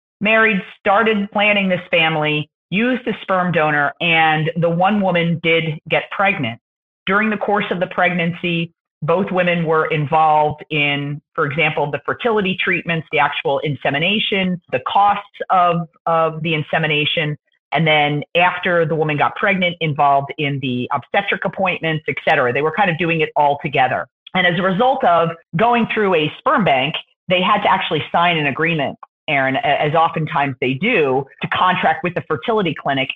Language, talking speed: English, 165 wpm